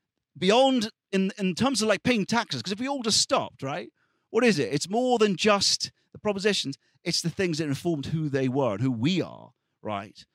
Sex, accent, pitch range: male, British, 110-150 Hz